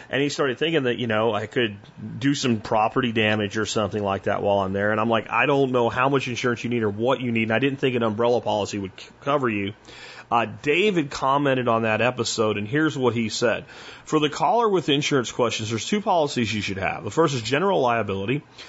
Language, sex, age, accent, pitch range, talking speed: French, male, 30-49, American, 115-140 Hz, 235 wpm